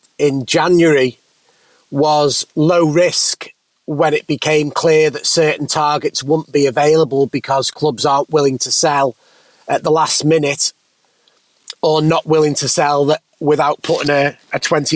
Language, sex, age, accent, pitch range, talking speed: English, male, 30-49, British, 145-170 Hz, 140 wpm